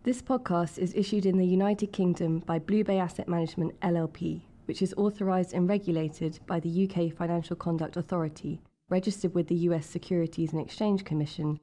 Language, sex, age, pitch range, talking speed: English, female, 20-39, 165-190 Hz, 170 wpm